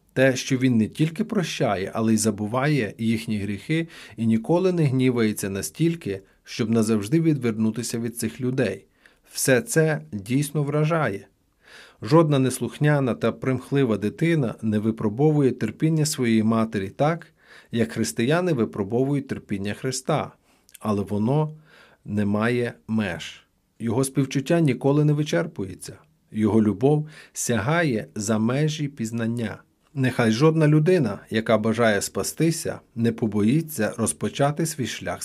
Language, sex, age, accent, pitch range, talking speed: Ukrainian, male, 40-59, native, 110-145 Hz, 115 wpm